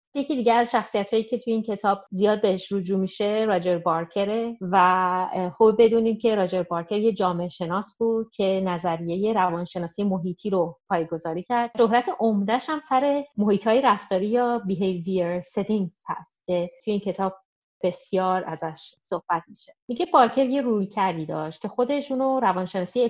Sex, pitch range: female, 180-225 Hz